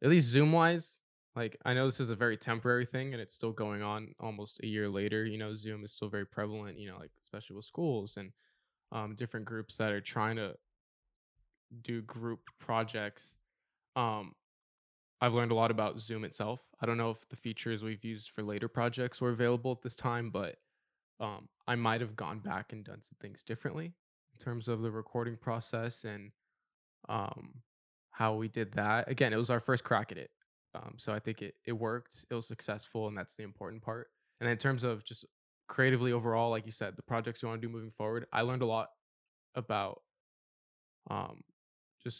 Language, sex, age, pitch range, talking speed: English, male, 10-29, 110-120 Hz, 200 wpm